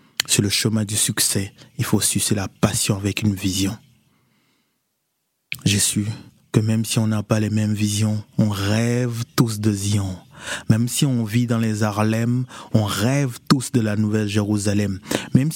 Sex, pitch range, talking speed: male, 105-125 Hz, 165 wpm